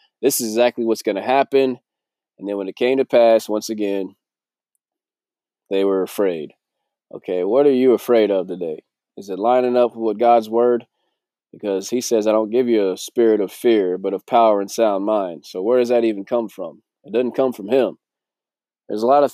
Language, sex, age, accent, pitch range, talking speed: English, male, 20-39, American, 105-125 Hz, 205 wpm